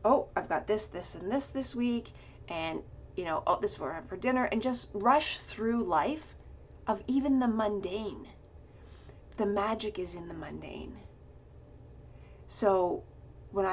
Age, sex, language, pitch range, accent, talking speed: 30-49, female, English, 185-230 Hz, American, 155 wpm